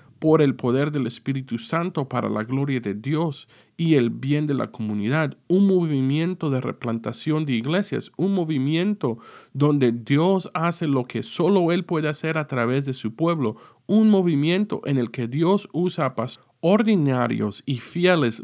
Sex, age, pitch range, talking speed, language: male, 50-69, 120-165 Hz, 165 wpm, Spanish